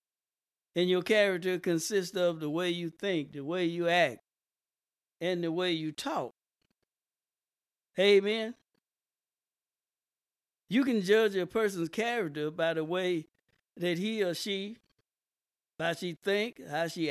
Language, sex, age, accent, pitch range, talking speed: English, male, 60-79, American, 170-215 Hz, 130 wpm